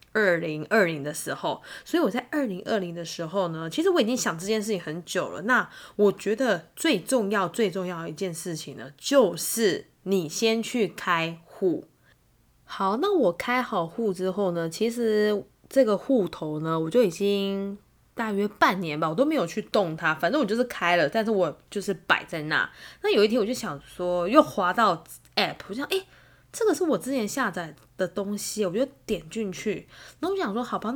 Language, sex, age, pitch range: Chinese, female, 10-29, 170-235 Hz